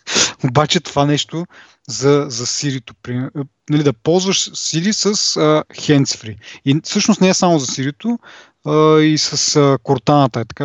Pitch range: 130-180 Hz